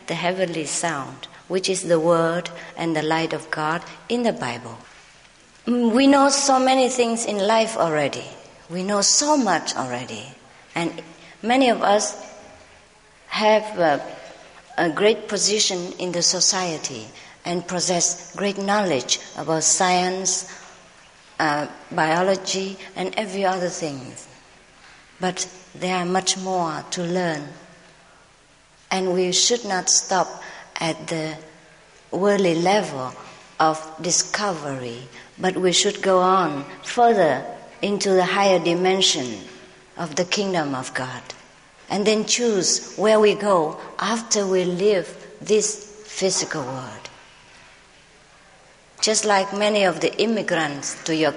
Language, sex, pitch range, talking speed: English, female, 160-200 Hz, 125 wpm